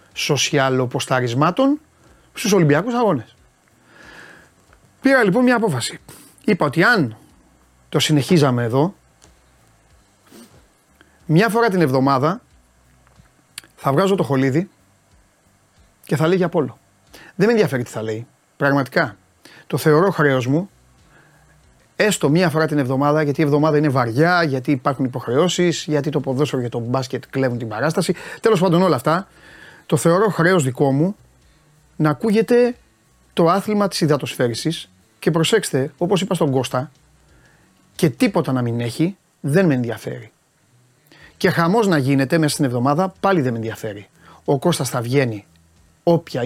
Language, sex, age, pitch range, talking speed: Greek, male, 30-49, 125-175 Hz, 135 wpm